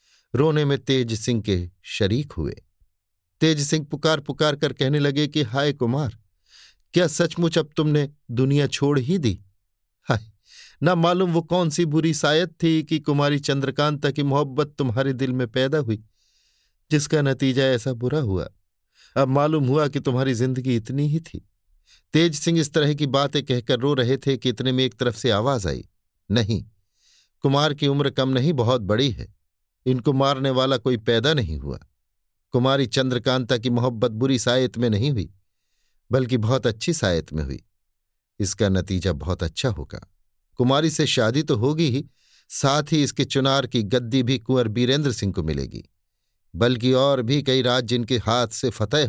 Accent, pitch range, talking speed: native, 100-140 Hz, 170 wpm